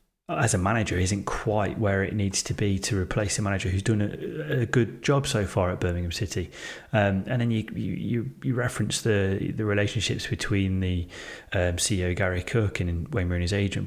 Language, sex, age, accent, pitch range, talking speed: English, male, 30-49, British, 95-115 Hz, 195 wpm